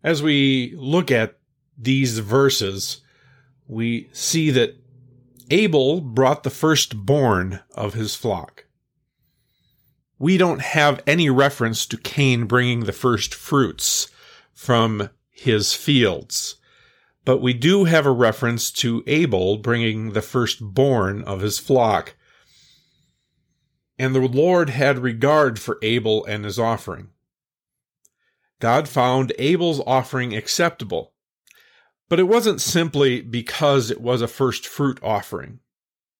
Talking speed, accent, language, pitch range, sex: 115 wpm, American, English, 110-145 Hz, male